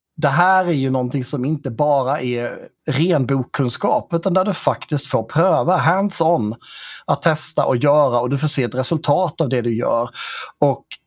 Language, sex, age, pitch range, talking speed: Swedish, male, 30-49, 135-165 Hz, 185 wpm